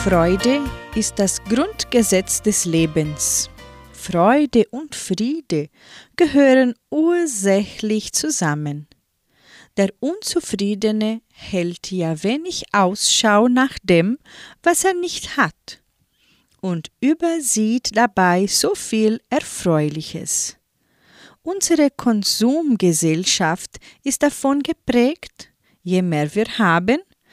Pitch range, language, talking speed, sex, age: 180-265 Hz, German, 85 wpm, female, 40-59